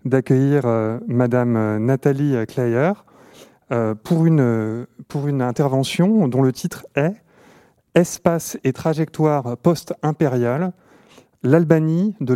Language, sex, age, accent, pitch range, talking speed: French, male, 30-49, French, 120-160 Hz, 105 wpm